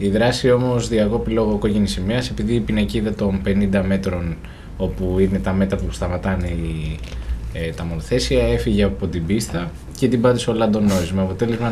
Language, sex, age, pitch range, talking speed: Greek, male, 20-39, 95-115 Hz, 170 wpm